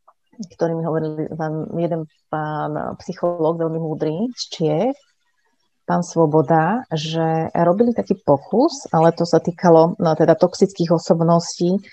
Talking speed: 115 wpm